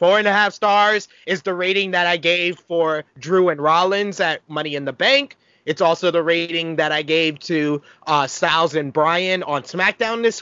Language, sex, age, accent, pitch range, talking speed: English, male, 30-49, American, 155-215 Hz, 200 wpm